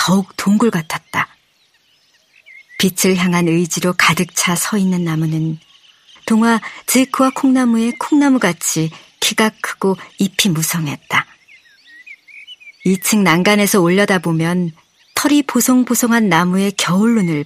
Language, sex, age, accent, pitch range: Korean, male, 40-59, native, 175-245 Hz